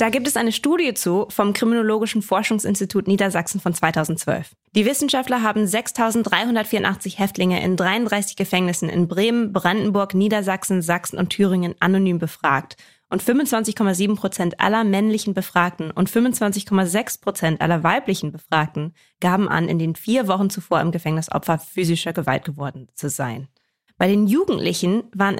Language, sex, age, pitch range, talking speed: German, female, 20-39, 170-215 Hz, 140 wpm